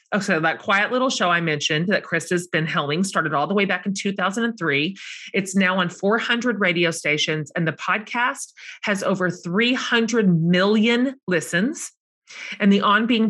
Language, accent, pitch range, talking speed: English, American, 165-215 Hz, 160 wpm